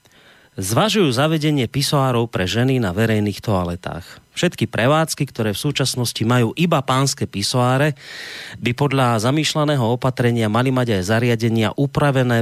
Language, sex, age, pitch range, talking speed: Slovak, male, 30-49, 105-140 Hz, 125 wpm